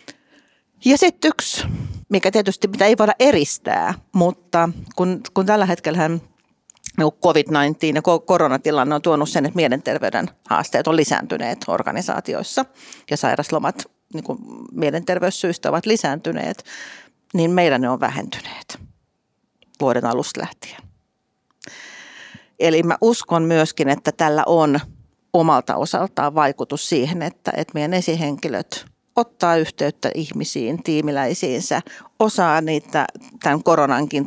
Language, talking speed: Finnish, 110 wpm